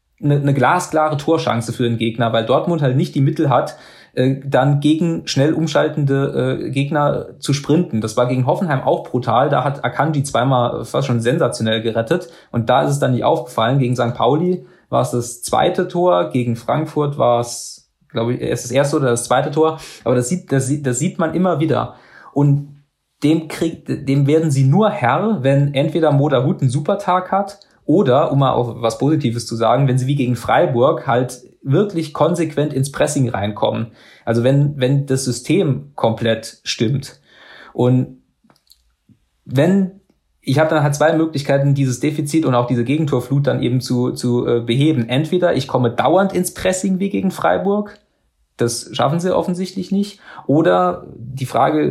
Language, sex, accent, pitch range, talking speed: German, male, German, 125-155 Hz, 175 wpm